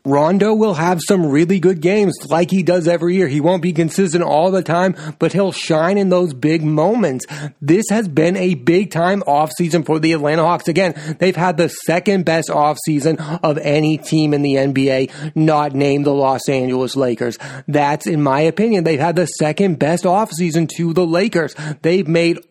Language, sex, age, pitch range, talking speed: English, male, 30-49, 155-185 Hz, 190 wpm